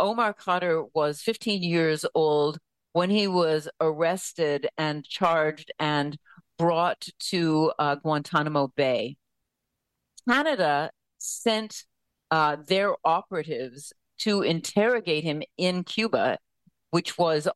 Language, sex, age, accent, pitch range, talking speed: English, female, 50-69, American, 145-180 Hz, 105 wpm